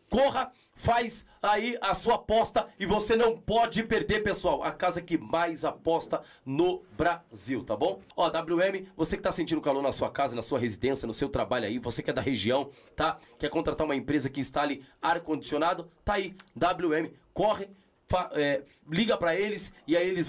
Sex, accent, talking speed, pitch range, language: male, Brazilian, 185 wpm, 150-195 Hz, Portuguese